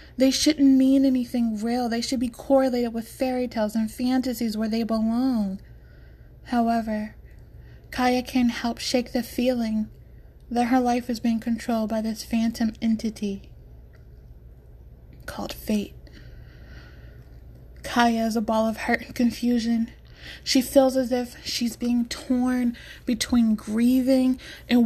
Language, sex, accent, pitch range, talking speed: English, female, American, 215-250 Hz, 130 wpm